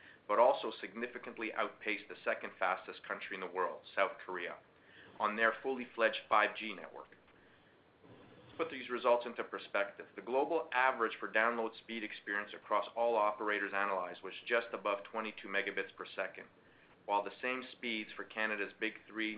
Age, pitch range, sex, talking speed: 40-59, 100-115 Hz, male, 155 wpm